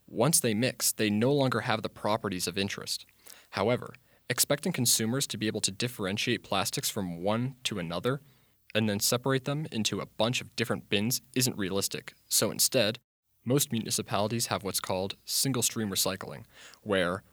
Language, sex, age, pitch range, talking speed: English, male, 20-39, 105-125 Hz, 160 wpm